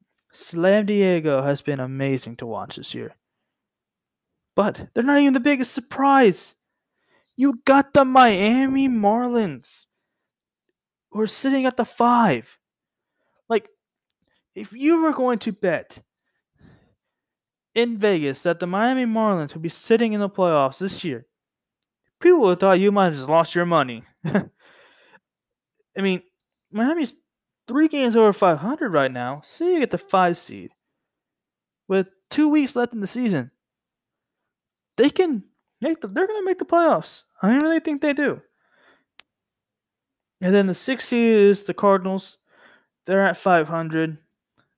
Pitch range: 160-255 Hz